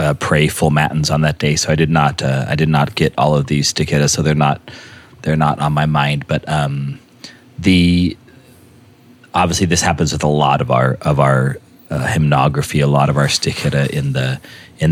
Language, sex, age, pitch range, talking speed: English, male, 30-49, 75-100 Hz, 205 wpm